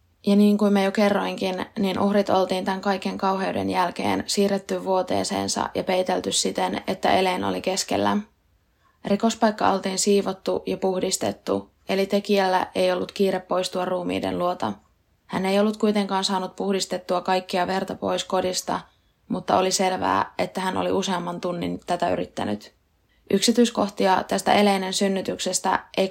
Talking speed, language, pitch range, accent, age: 140 wpm, Finnish, 175-195 Hz, native, 20-39